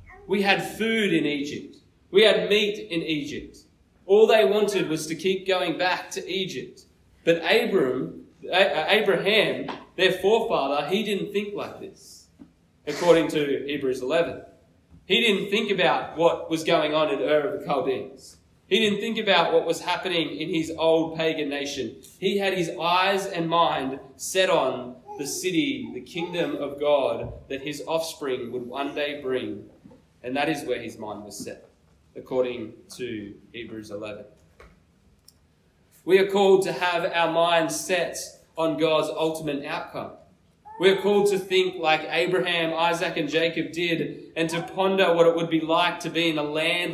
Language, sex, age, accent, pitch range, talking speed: English, male, 20-39, Australian, 145-180 Hz, 165 wpm